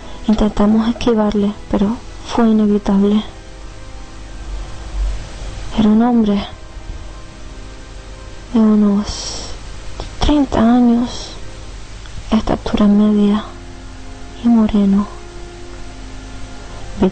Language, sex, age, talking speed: Spanish, female, 20-39, 65 wpm